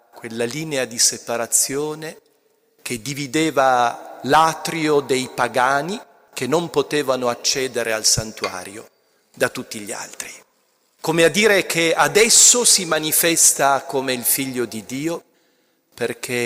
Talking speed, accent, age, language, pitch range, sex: 115 wpm, native, 40-59, Italian, 110-140 Hz, male